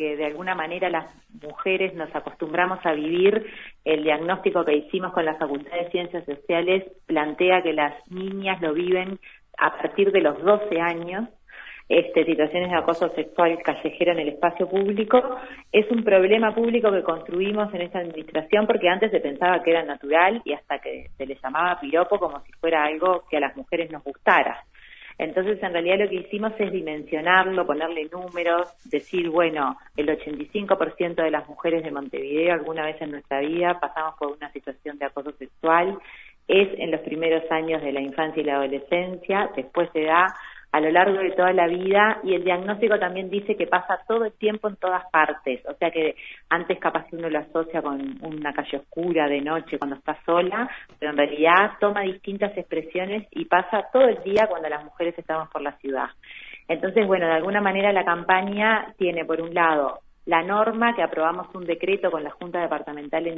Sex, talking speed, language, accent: female, 185 wpm, Spanish, Argentinian